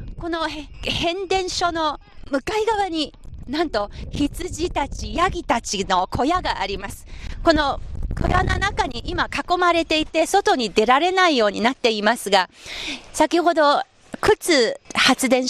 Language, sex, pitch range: Japanese, female, 200-300 Hz